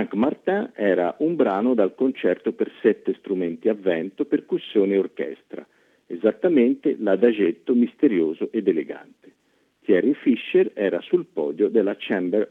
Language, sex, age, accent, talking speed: Italian, male, 50-69, native, 130 wpm